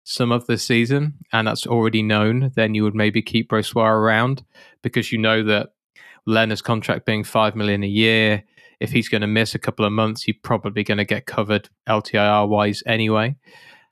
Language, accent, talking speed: English, British, 185 wpm